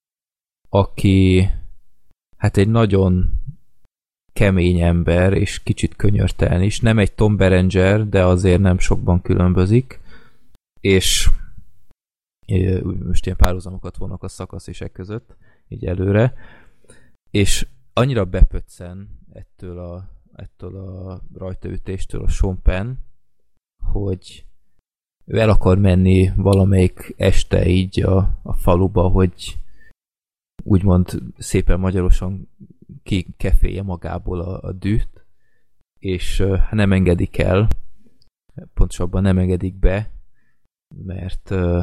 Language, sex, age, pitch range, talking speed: Hungarian, male, 20-39, 90-100 Hz, 100 wpm